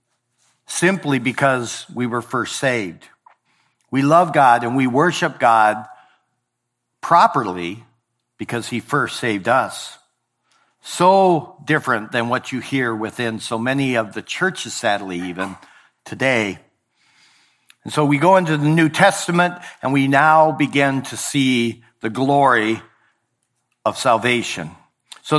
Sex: male